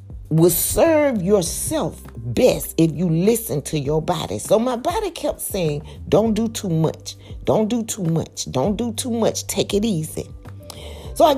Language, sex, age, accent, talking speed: English, female, 40-59, American, 170 wpm